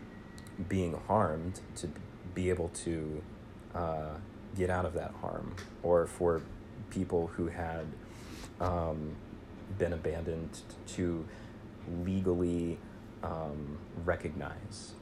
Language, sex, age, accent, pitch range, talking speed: English, male, 30-49, American, 85-110 Hz, 95 wpm